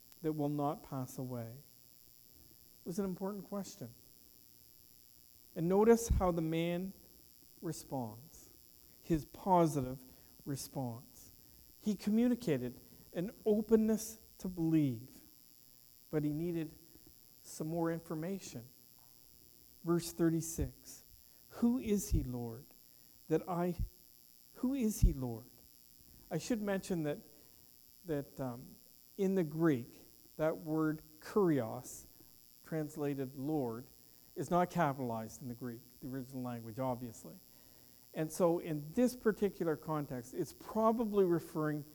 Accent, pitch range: American, 130-175 Hz